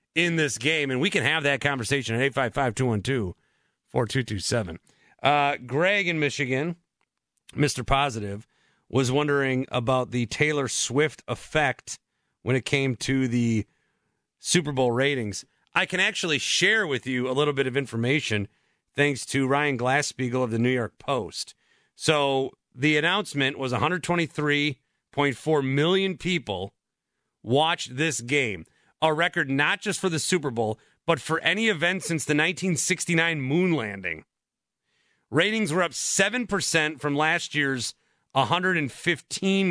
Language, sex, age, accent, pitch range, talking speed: English, male, 40-59, American, 130-175 Hz, 130 wpm